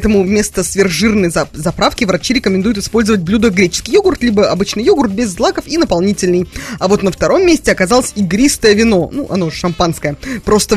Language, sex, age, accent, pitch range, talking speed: Russian, female, 20-39, native, 190-270 Hz, 160 wpm